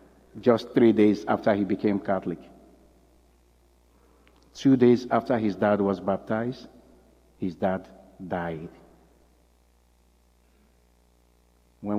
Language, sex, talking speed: English, male, 90 wpm